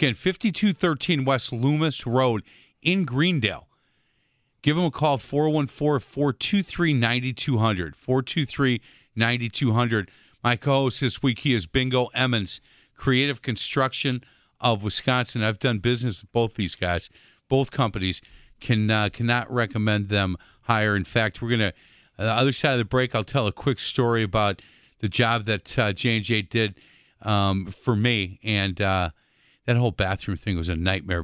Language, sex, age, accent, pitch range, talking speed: English, male, 40-59, American, 105-135 Hz, 145 wpm